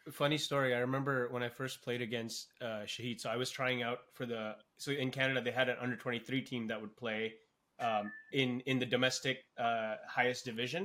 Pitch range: 125-150 Hz